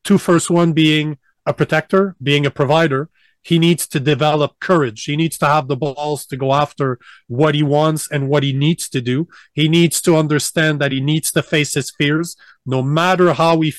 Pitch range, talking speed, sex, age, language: 140-165 Hz, 205 wpm, male, 40-59, English